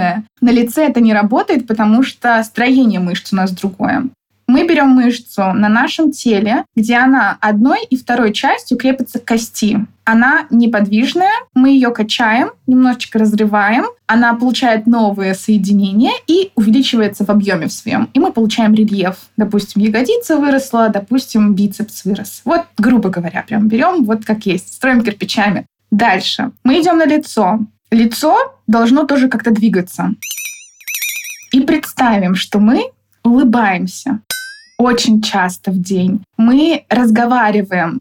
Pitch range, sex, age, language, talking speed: 210-255 Hz, female, 20-39, Russian, 135 wpm